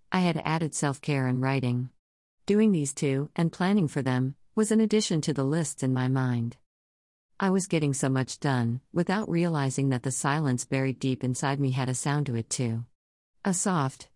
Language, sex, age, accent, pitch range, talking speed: English, female, 50-69, American, 130-165 Hz, 190 wpm